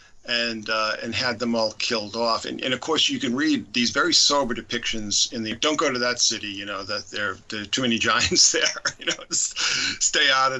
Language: English